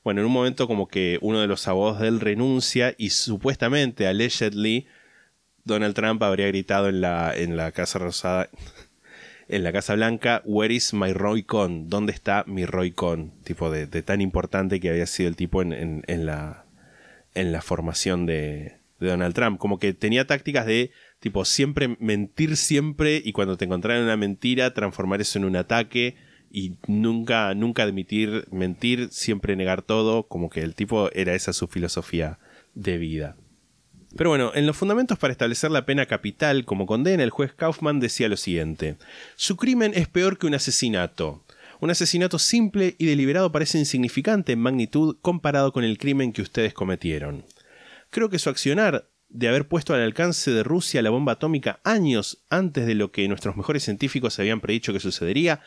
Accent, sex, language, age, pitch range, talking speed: Argentinian, male, Spanish, 20-39, 95-140 Hz, 180 wpm